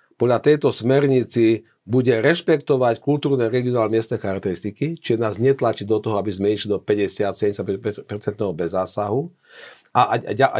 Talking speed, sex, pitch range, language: 130 wpm, male, 115-140 Hz, Slovak